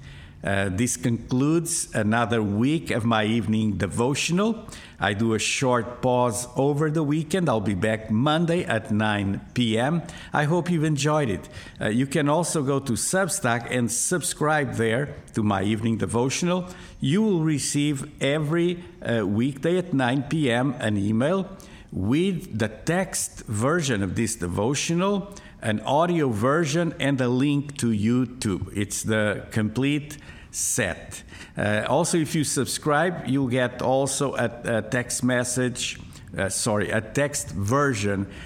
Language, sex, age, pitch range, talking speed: English, male, 50-69, 110-150 Hz, 140 wpm